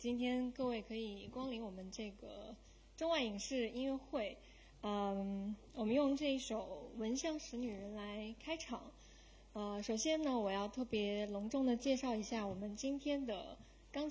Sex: female